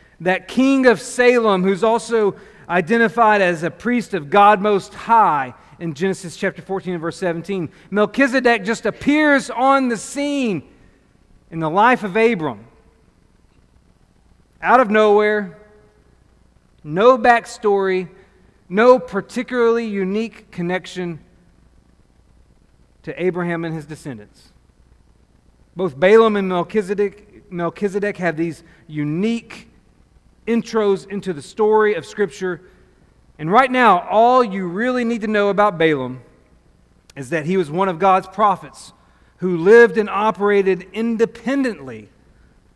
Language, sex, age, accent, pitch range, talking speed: English, male, 40-59, American, 170-230 Hz, 120 wpm